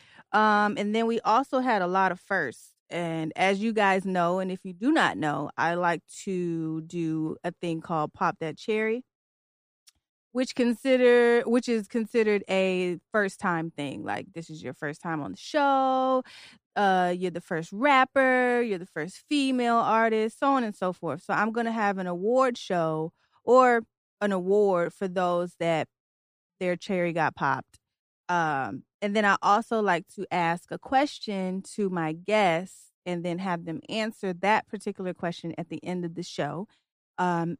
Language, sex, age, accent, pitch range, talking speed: English, female, 30-49, American, 170-220 Hz, 175 wpm